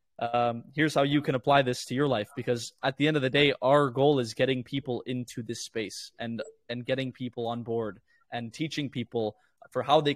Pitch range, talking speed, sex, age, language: 120-150 Hz, 225 wpm, male, 20-39, English